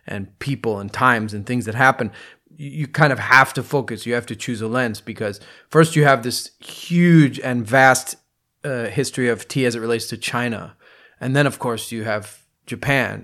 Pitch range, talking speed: 115-140 Hz, 200 wpm